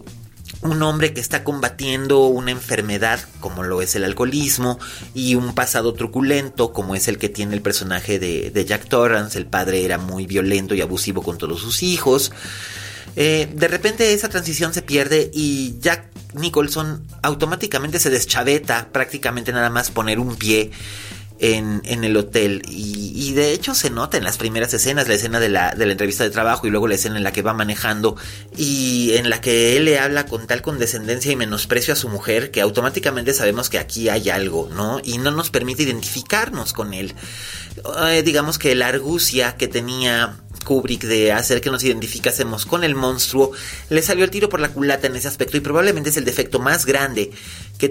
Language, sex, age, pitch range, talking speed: Spanish, male, 30-49, 105-145 Hz, 190 wpm